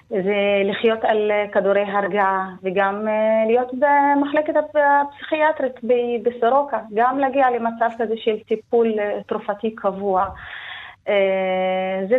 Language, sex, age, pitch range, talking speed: Hebrew, female, 30-49, 205-270 Hz, 90 wpm